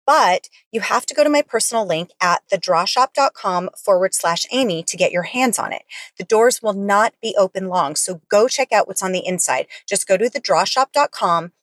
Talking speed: 200 wpm